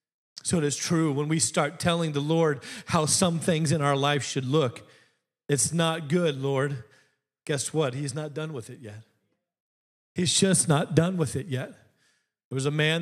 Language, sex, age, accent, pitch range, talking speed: English, male, 40-59, American, 135-160 Hz, 190 wpm